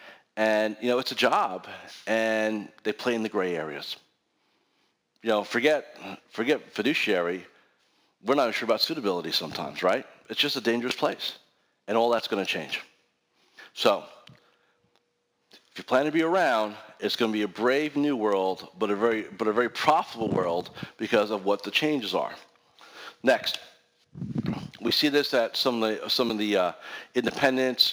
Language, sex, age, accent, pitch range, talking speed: English, male, 40-59, American, 105-130 Hz, 170 wpm